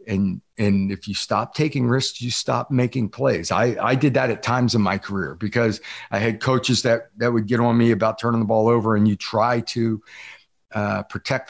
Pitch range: 100-120 Hz